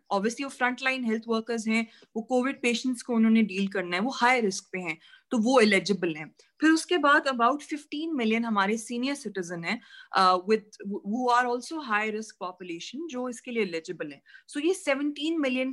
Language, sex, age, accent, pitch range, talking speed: Hindi, female, 30-49, native, 200-270 Hz, 105 wpm